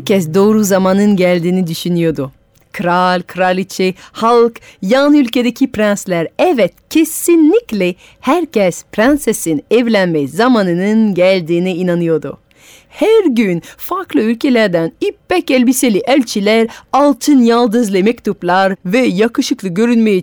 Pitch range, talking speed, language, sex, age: 170-240 Hz, 95 wpm, Turkish, female, 40-59